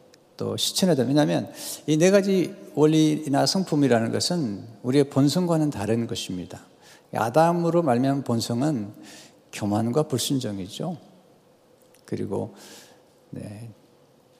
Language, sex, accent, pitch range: Korean, male, native, 120-165 Hz